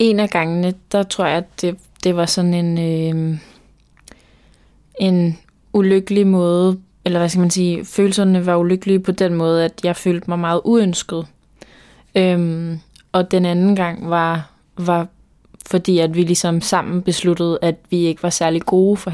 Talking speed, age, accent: 165 wpm, 20-39, native